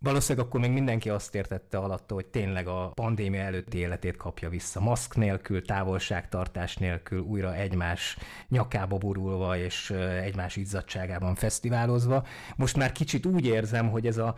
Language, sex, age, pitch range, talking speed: Hungarian, male, 30-49, 95-115 Hz, 145 wpm